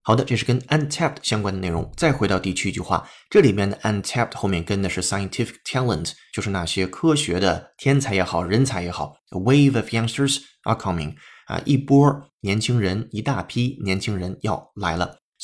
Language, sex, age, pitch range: Chinese, male, 20-39, 95-140 Hz